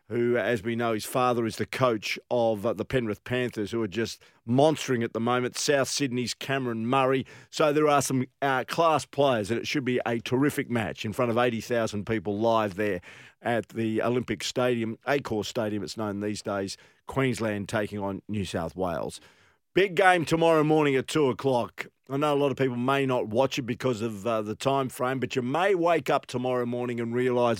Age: 50-69